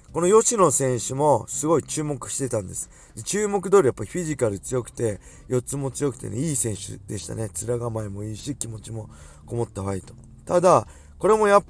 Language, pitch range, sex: Japanese, 110-150 Hz, male